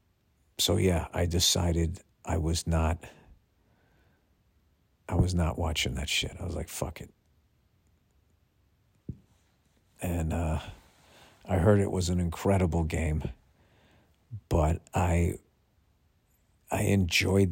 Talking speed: 105 wpm